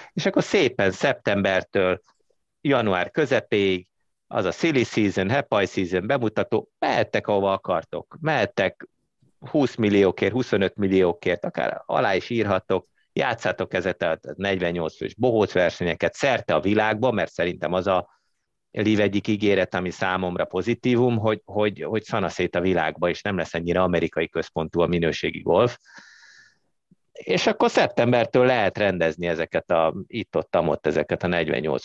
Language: Hungarian